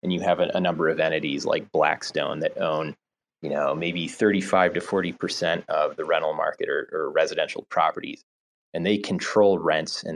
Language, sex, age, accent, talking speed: English, male, 30-49, American, 190 wpm